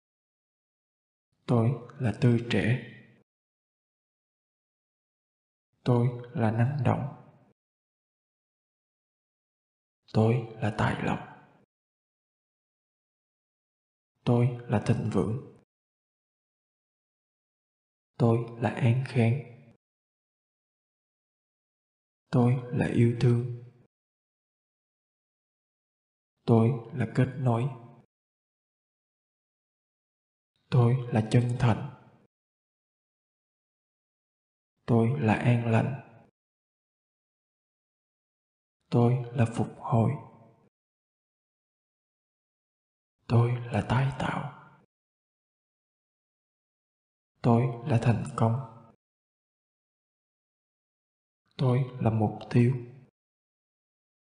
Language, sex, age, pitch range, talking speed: Vietnamese, male, 20-39, 115-125 Hz, 60 wpm